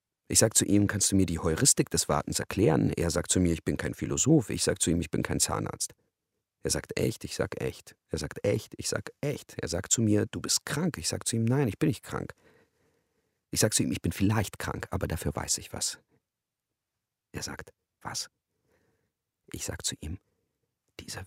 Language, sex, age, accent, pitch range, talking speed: German, male, 50-69, German, 85-135 Hz, 215 wpm